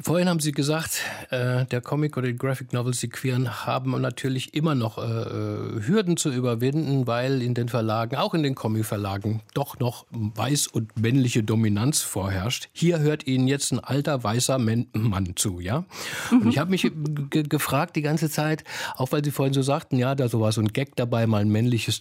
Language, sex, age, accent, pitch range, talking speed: German, male, 50-69, German, 115-150 Hz, 190 wpm